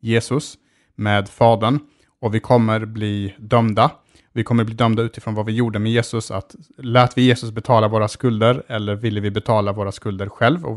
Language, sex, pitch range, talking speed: Swedish, male, 110-130 Hz, 185 wpm